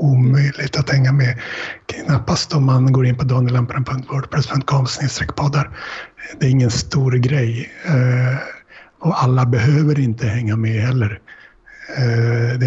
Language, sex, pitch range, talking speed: Swedish, male, 120-135 Hz, 115 wpm